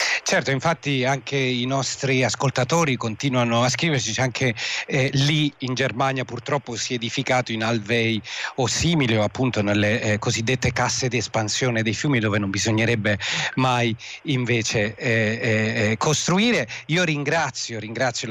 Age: 40-59